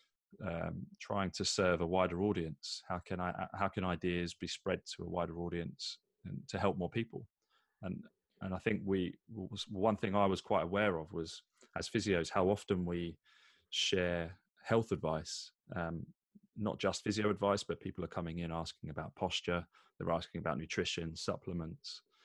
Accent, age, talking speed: British, 20-39, 170 wpm